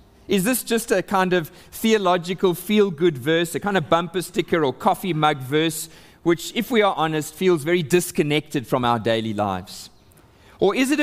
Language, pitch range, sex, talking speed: English, 140-190 Hz, male, 180 wpm